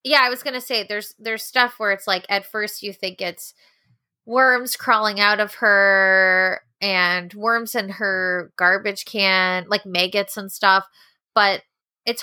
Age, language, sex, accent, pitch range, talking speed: 20-39, English, female, American, 180-215 Hz, 165 wpm